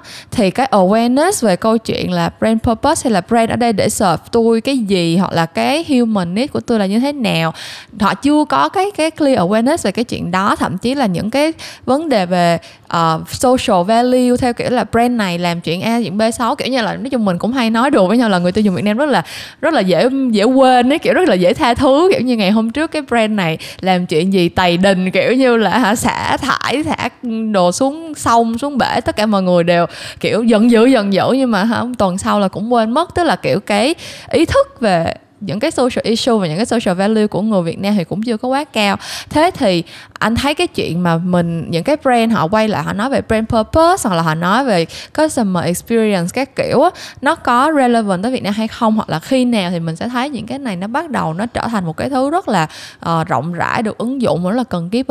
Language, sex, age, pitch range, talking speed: Vietnamese, female, 20-39, 190-255 Hz, 255 wpm